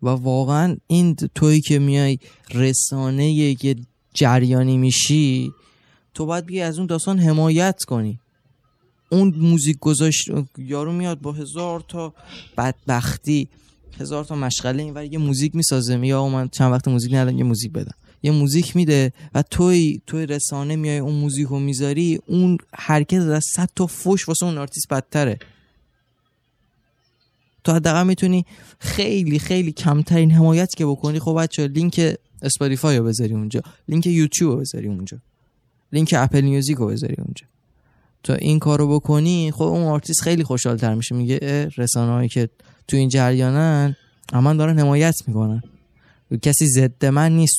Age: 20-39